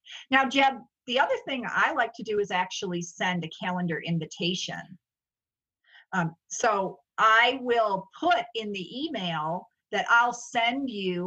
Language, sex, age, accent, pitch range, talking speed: English, female, 50-69, American, 195-250 Hz, 145 wpm